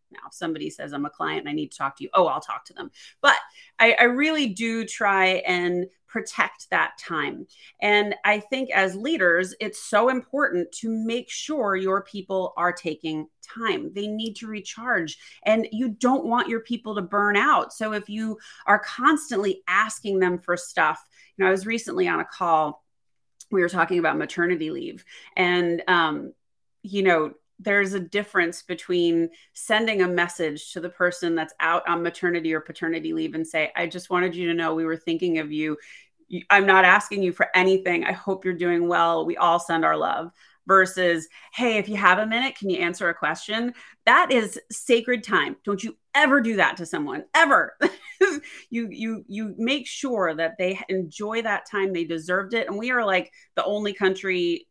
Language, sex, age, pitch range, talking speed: English, female, 30-49, 175-230 Hz, 190 wpm